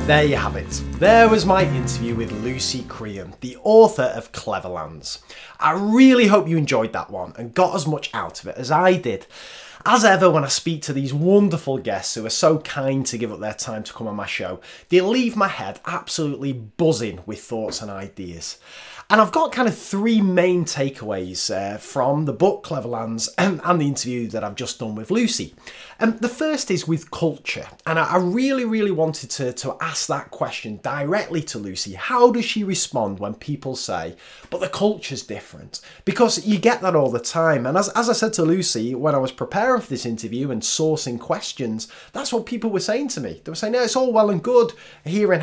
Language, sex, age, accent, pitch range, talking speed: English, male, 30-49, British, 120-200 Hz, 210 wpm